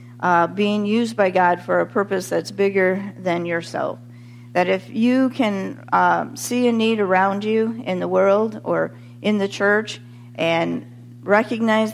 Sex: female